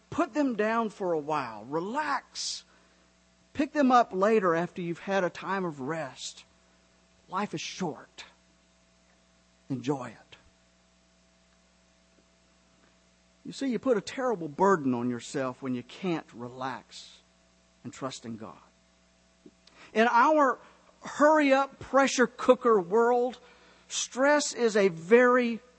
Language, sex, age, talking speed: English, male, 50-69, 120 wpm